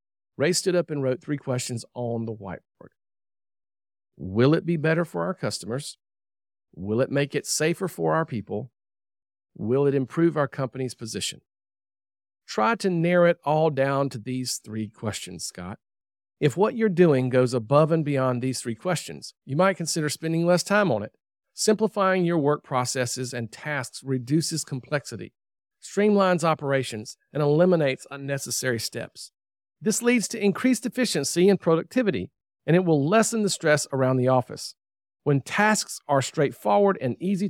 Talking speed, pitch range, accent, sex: 155 wpm, 115-175 Hz, American, male